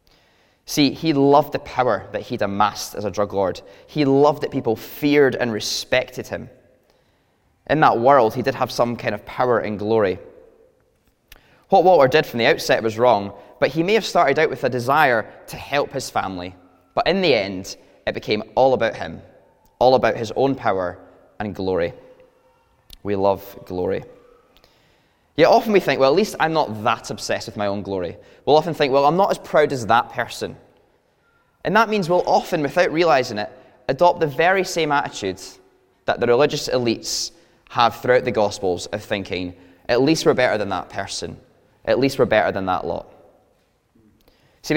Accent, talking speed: British, 180 wpm